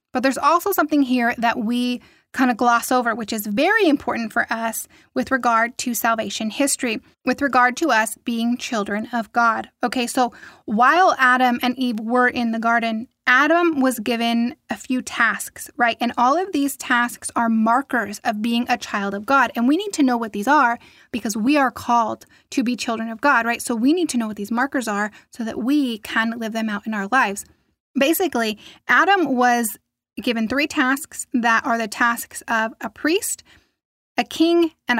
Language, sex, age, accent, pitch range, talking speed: English, female, 10-29, American, 230-280 Hz, 195 wpm